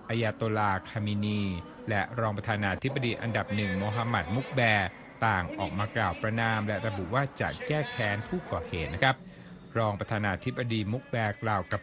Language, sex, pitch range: Thai, male, 105-135 Hz